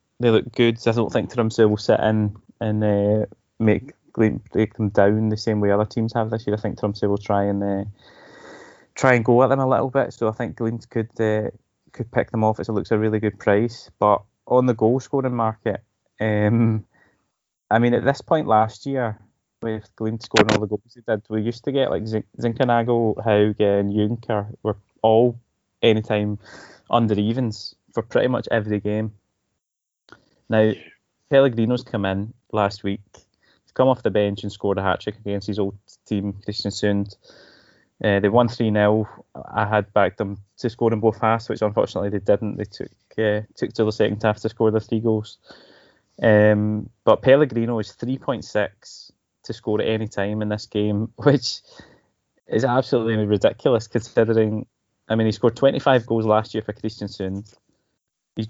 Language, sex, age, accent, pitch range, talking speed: English, male, 20-39, British, 105-115 Hz, 190 wpm